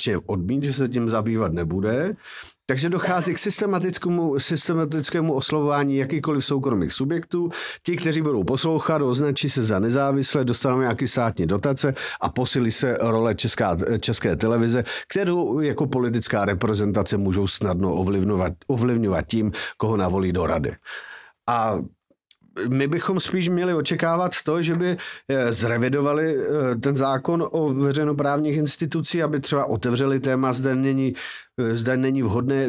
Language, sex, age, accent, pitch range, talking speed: Czech, male, 50-69, native, 115-140 Hz, 130 wpm